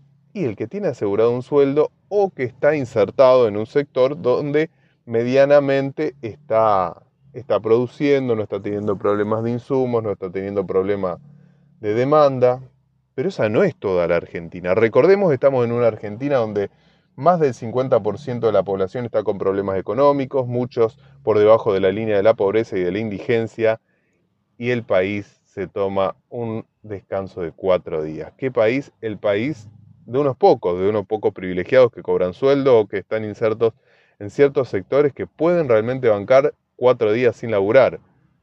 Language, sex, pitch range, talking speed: Spanish, male, 100-135 Hz, 165 wpm